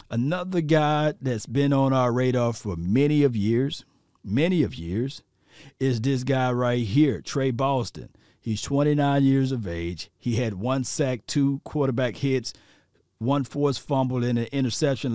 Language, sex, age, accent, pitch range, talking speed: English, male, 50-69, American, 115-145 Hz, 155 wpm